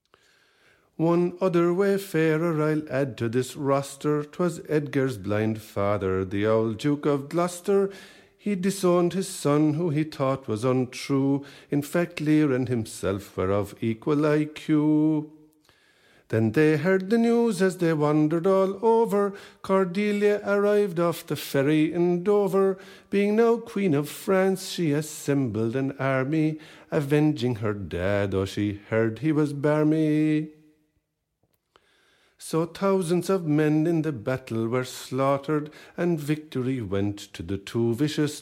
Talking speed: 135 wpm